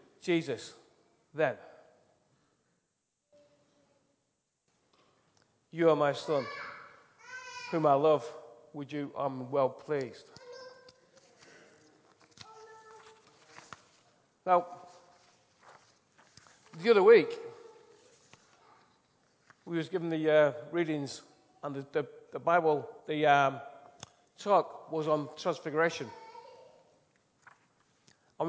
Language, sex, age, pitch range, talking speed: English, male, 40-59, 145-205 Hz, 75 wpm